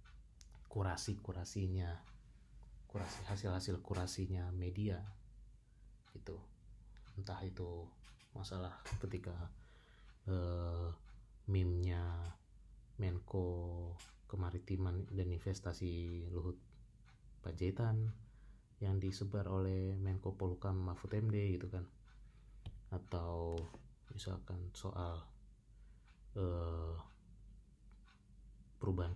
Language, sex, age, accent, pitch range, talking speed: Indonesian, male, 20-39, native, 90-105 Hz, 65 wpm